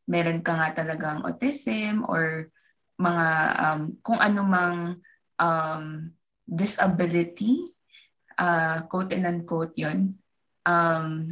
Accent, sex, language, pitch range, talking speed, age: native, female, Filipino, 165-210 Hz, 95 wpm, 20-39